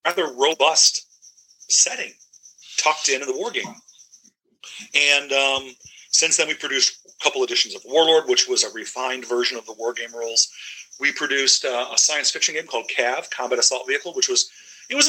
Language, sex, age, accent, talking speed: English, male, 40-59, American, 185 wpm